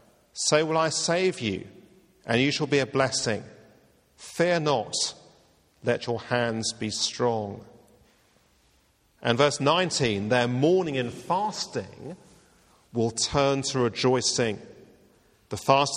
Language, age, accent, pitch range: English, 50-69, British, 115-160 Hz